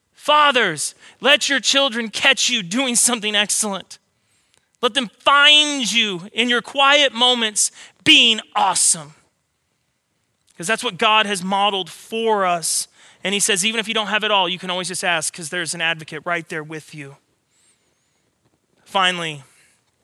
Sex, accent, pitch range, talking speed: male, American, 170-225 Hz, 155 wpm